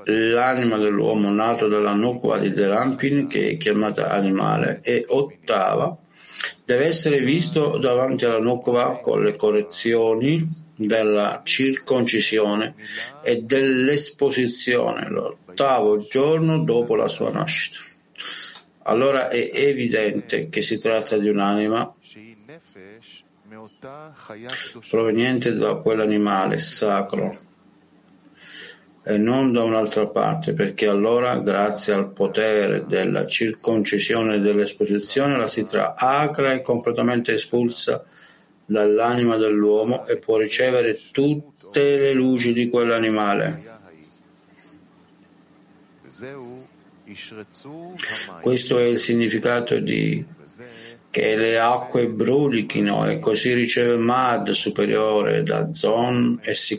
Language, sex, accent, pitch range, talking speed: Italian, male, native, 105-130 Hz, 100 wpm